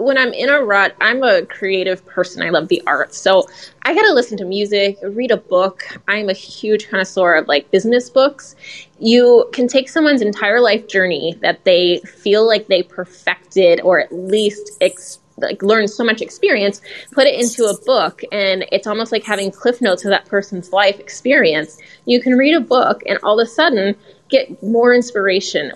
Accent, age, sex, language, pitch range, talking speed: American, 20-39, female, English, 190-245 Hz, 190 wpm